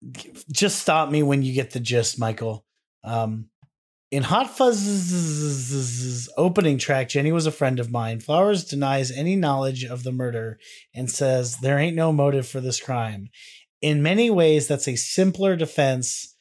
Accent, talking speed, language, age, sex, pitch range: American, 160 wpm, English, 30-49, male, 120-150 Hz